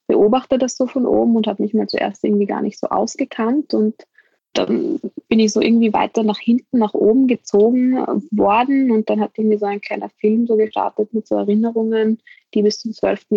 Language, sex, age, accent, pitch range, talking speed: German, female, 20-39, German, 200-240 Hz, 200 wpm